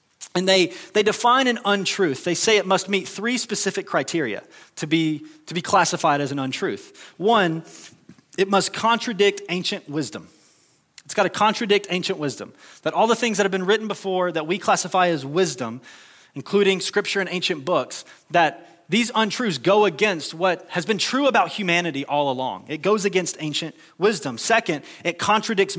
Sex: male